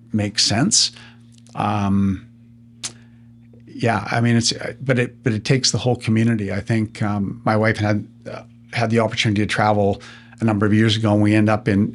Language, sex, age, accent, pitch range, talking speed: English, male, 50-69, American, 110-120 Hz, 185 wpm